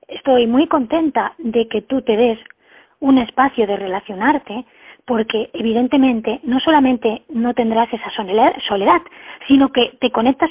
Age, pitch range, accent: 20-39, 215-270 Hz, Spanish